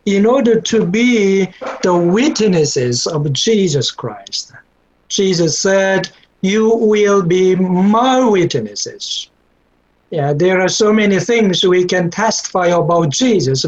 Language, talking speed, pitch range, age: English, 120 wpm, 175-225 Hz, 60-79